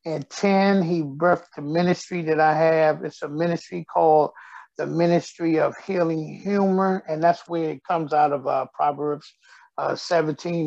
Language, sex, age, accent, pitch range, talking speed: English, male, 50-69, American, 145-170 Hz, 165 wpm